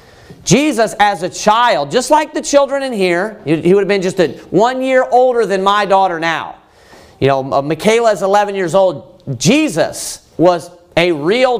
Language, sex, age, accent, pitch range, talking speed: English, male, 40-59, American, 170-245 Hz, 175 wpm